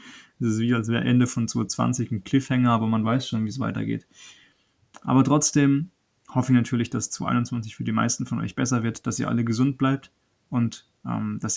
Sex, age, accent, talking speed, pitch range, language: male, 20-39, German, 200 wpm, 115-130 Hz, German